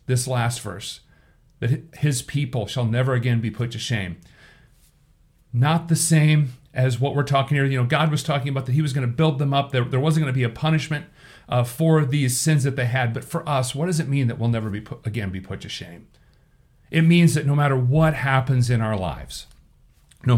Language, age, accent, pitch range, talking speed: English, 40-59, American, 120-155 Hz, 225 wpm